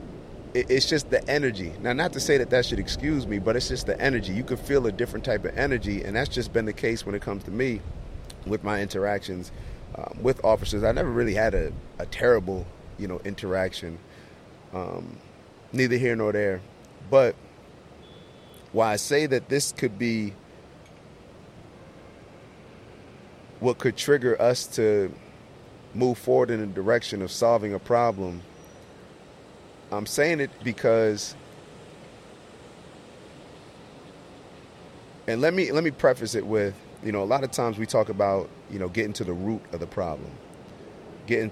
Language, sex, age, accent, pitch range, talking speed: English, male, 30-49, American, 100-125 Hz, 160 wpm